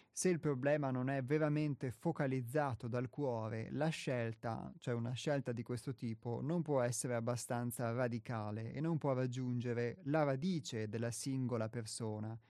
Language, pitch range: Italian, 115-140 Hz